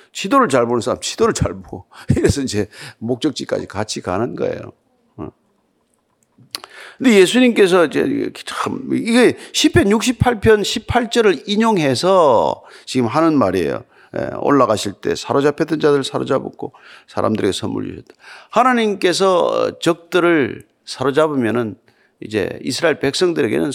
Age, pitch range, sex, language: 50-69, 145-240 Hz, male, Korean